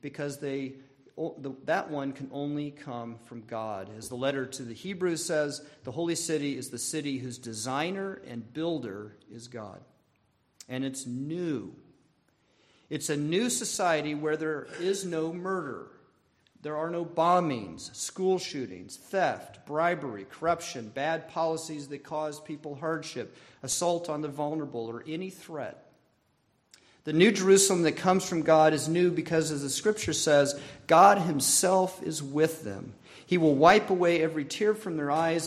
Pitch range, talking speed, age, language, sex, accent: 135-170 Hz, 150 wpm, 40-59, English, male, American